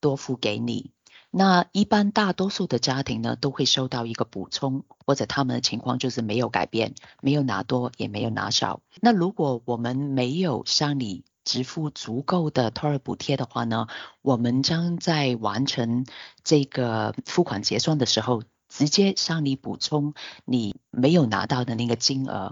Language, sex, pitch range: Chinese, female, 120-150 Hz